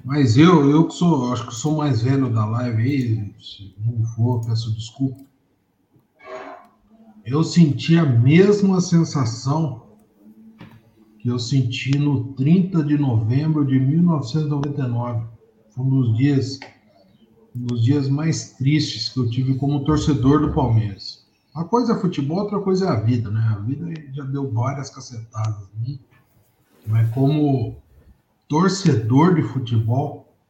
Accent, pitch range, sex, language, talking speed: Brazilian, 115-165 Hz, male, Portuguese, 135 wpm